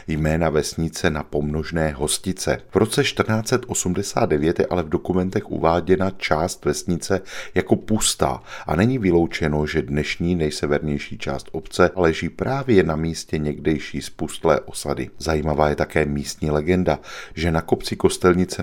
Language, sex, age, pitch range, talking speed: Czech, male, 40-59, 75-90 Hz, 130 wpm